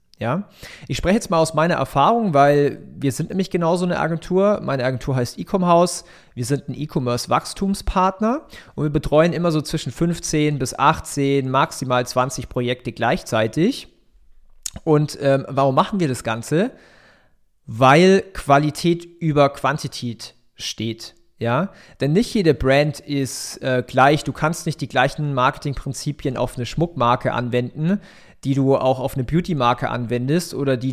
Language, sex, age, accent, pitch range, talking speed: German, male, 40-59, German, 125-165 Hz, 145 wpm